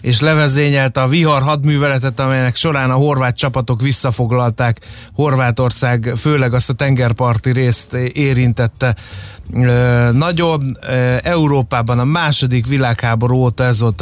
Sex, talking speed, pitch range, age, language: male, 110 wpm, 115-135 Hz, 30-49, Hungarian